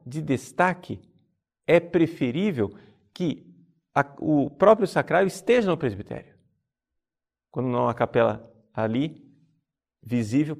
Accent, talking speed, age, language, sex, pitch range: Brazilian, 95 wpm, 50-69, Portuguese, male, 110-150 Hz